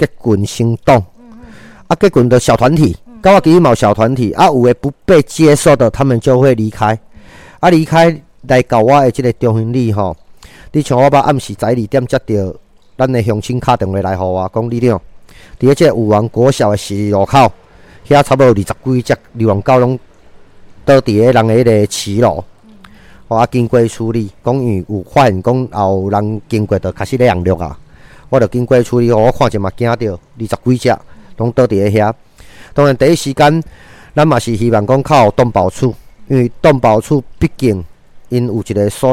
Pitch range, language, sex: 105-130 Hz, Chinese, male